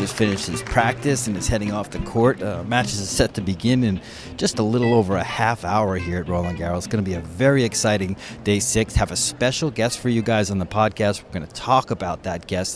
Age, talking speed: 30-49, 255 wpm